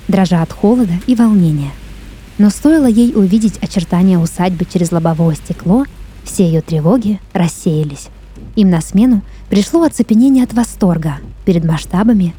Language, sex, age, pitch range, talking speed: Russian, female, 20-39, 170-220 Hz, 130 wpm